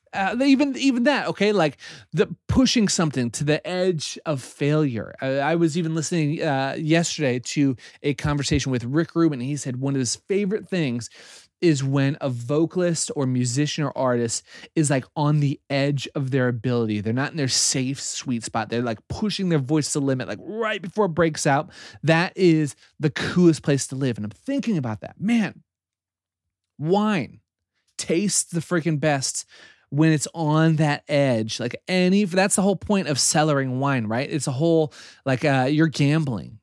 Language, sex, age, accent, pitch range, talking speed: English, male, 30-49, American, 125-165 Hz, 185 wpm